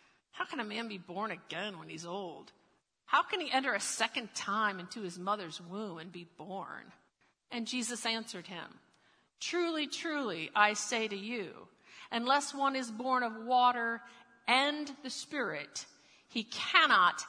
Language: English